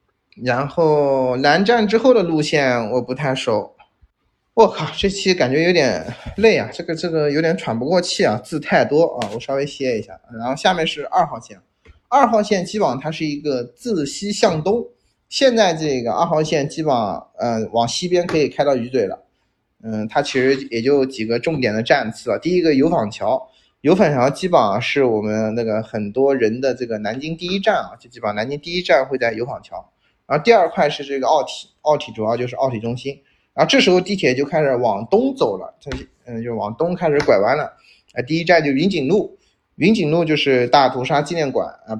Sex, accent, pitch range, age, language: male, native, 125-180 Hz, 20-39, Chinese